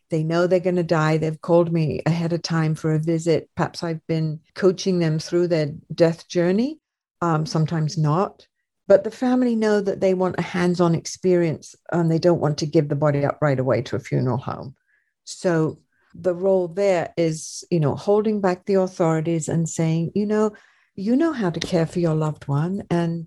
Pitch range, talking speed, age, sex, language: 160-185 Hz, 200 wpm, 60-79, female, English